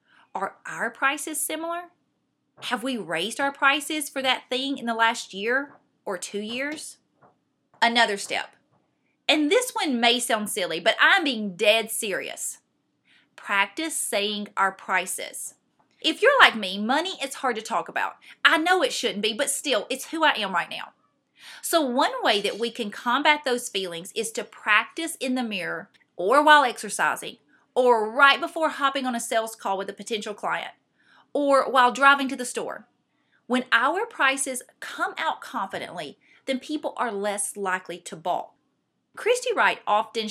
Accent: American